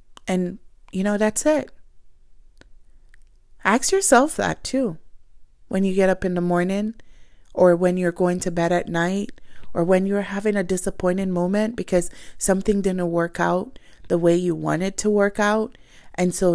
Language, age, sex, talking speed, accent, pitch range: English, 20-39, female, 165 wpm, American, 175-225 Hz